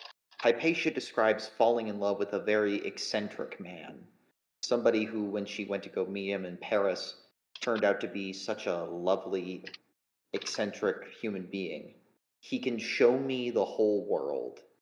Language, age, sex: English, 30-49, male